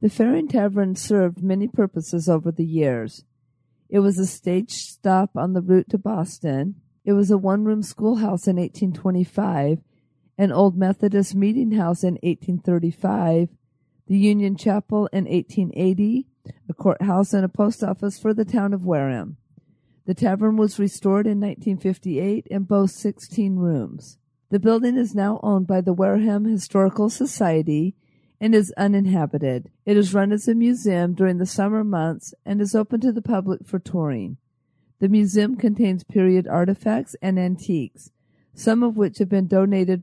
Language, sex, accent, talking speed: English, female, American, 155 wpm